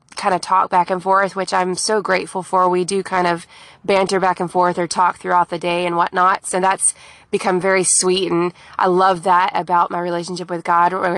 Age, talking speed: 20-39, 220 wpm